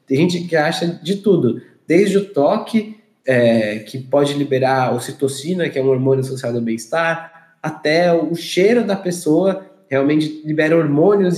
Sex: male